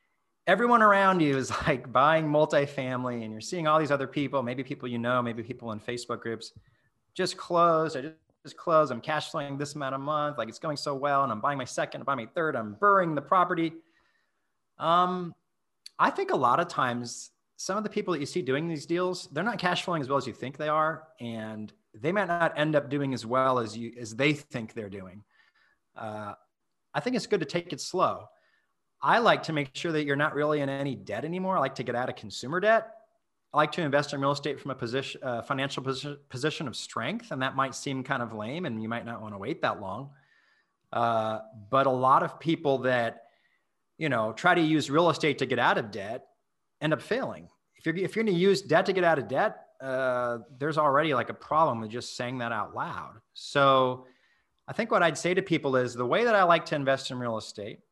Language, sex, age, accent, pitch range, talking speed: English, male, 30-49, American, 120-165 Hz, 230 wpm